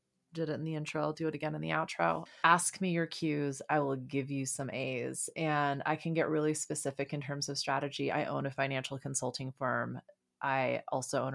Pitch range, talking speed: 145-180 Hz, 215 wpm